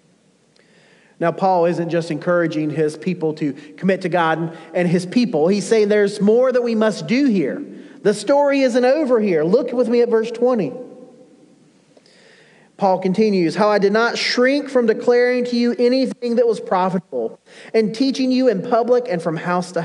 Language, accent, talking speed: English, American, 175 wpm